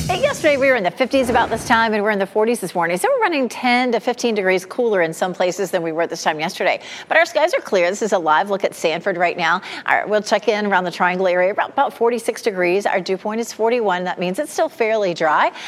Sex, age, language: female, 40-59, English